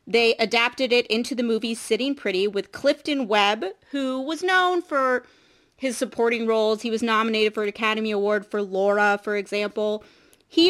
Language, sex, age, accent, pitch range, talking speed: English, female, 30-49, American, 200-250 Hz, 170 wpm